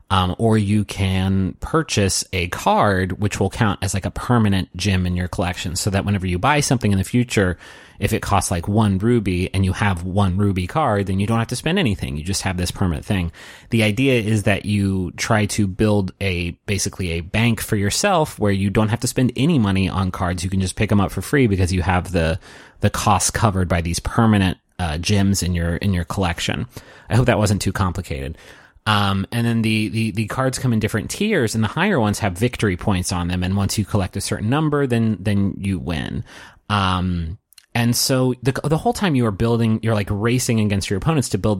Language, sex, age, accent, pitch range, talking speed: English, male, 30-49, American, 95-115 Hz, 225 wpm